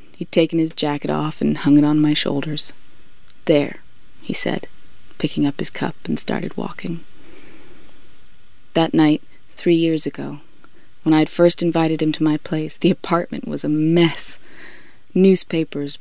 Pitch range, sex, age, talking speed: 145-175 Hz, female, 20-39, 150 wpm